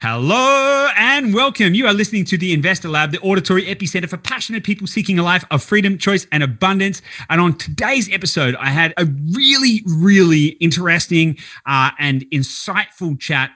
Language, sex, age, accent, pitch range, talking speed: English, male, 30-49, Australian, 120-170 Hz, 170 wpm